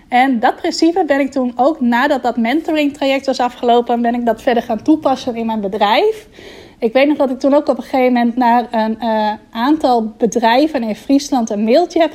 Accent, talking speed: Dutch, 205 wpm